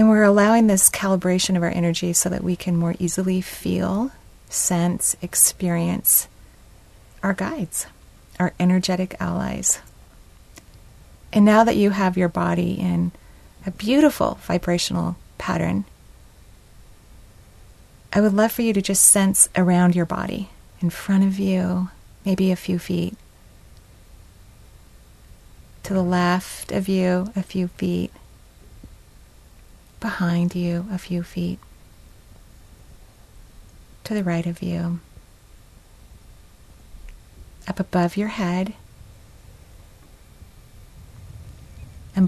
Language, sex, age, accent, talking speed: English, female, 30-49, American, 110 wpm